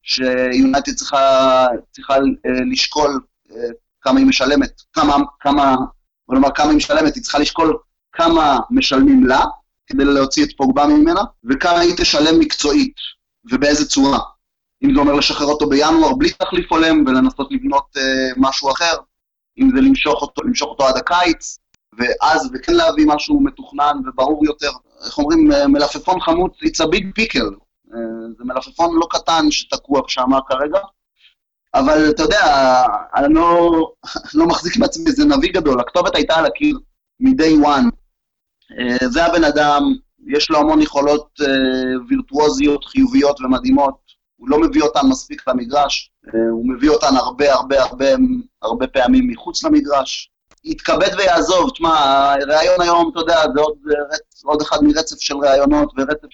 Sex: male